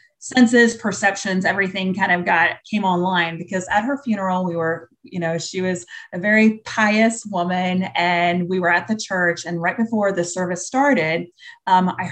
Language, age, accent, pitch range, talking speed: English, 30-49, American, 180-235 Hz, 180 wpm